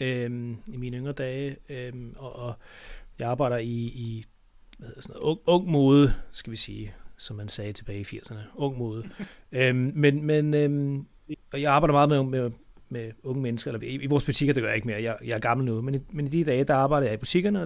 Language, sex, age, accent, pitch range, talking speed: Danish, male, 30-49, native, 120-140 Hz, 230 wpm